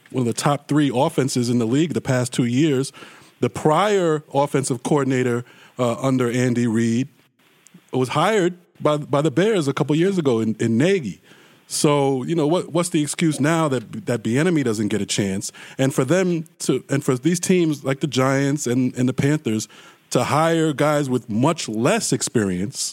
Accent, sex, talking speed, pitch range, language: American, male, 190 wpm, 130-165 Hz, English